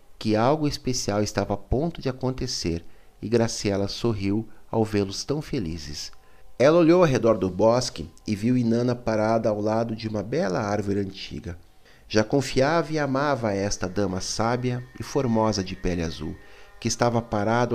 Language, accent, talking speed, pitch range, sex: Portuguese, Brazilian, 160 wpm, 100-125 Hz, male